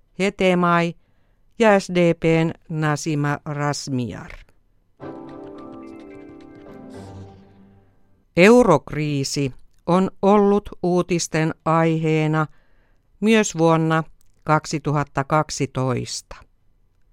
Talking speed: 45 wpm